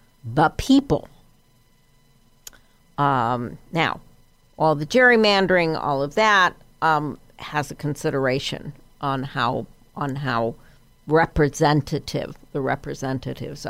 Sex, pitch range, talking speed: female, 135-160 Hz, 90 wpm